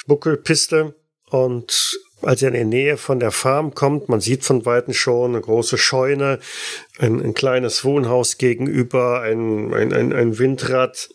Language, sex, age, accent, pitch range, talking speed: German, male, 40-59, German, 125-145 Hz, 150 wpm